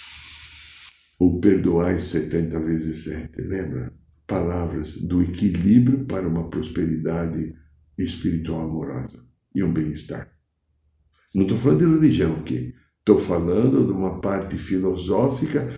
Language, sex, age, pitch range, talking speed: Portuguese, male, 60-79, 80-115 Hz, 120 wpm